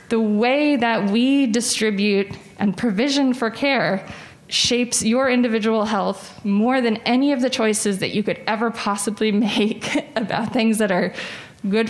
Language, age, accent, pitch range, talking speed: English, 20-39, American, 200-235 Hz, 150 wpm